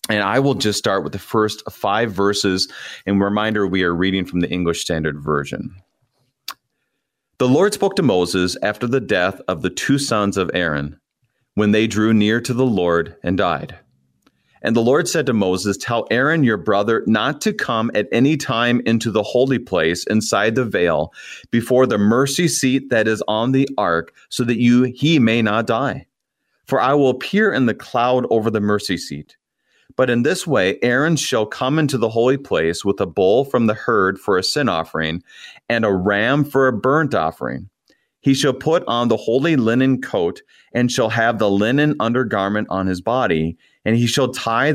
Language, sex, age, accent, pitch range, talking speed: English, male, 30-49, American, 100-130 Hz, 190 wpm